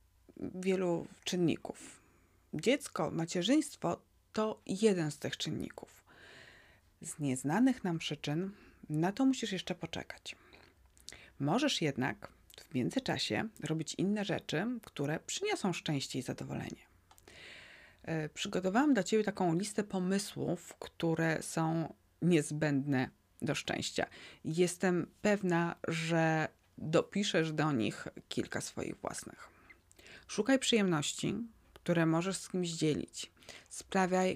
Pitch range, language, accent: 150-185 Hz, Polish, native